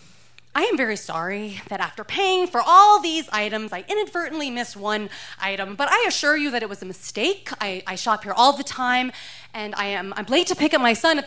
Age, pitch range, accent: 30-49, 175-275 Hz, American